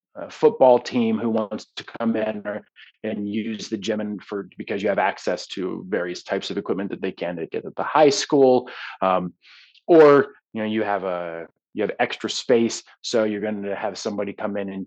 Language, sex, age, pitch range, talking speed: English, male, 30-49, 100-130 Hz, 210 wpm